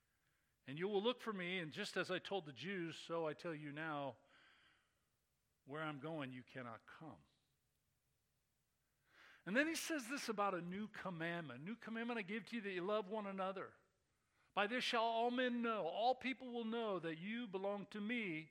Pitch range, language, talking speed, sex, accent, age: 155-225 Hz, English, 195 wpm, male, American, 50-69